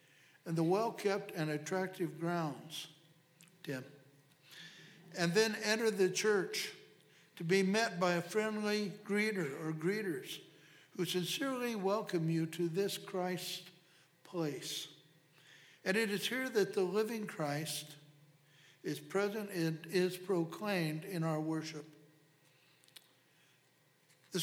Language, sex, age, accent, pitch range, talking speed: English, male, 60-79, American, 155-195 Hz, 115 wpm